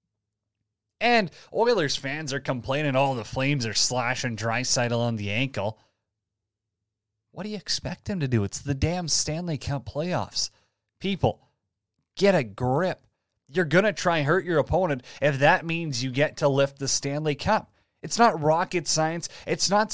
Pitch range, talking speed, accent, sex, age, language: 110-170 Hz, 170 wpm, American, male, 30-49, English